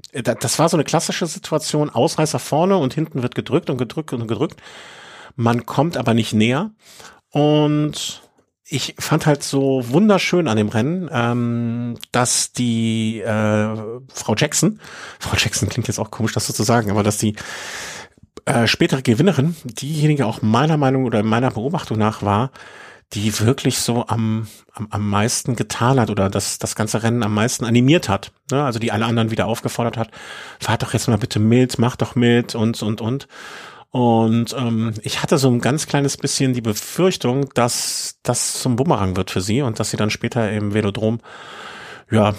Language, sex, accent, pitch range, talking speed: German, male, German, 110-140 Hz, 175 wpm